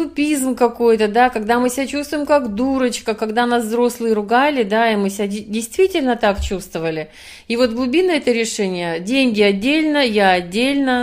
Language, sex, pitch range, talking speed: Russian, female, 210-270 Hz, 160 wpm